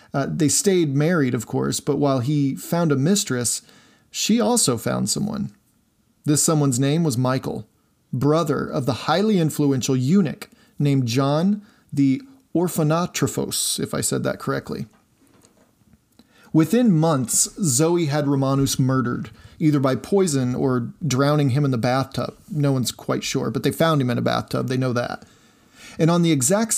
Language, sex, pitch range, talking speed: English, male, 135-170 Hz, 155 wpm